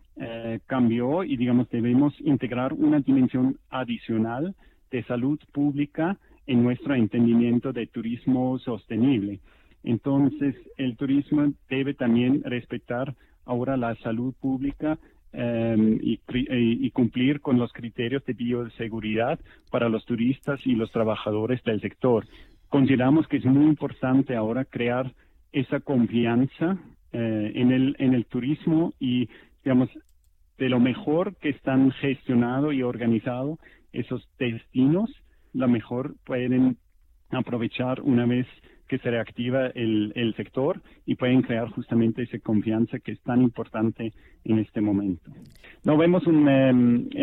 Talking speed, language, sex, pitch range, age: 130 wpm, Spanish, male, 115-135 Hz, 40-59